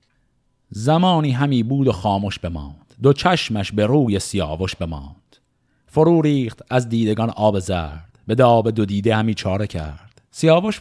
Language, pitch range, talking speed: Persian, 115-155 Hz, 145 wpm